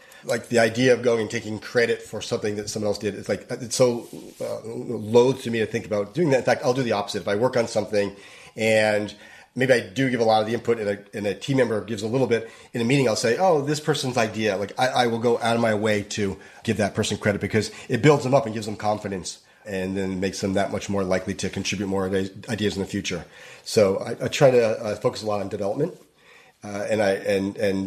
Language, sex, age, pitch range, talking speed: English, male, 30-49, 100-120 Hz, 260 wpm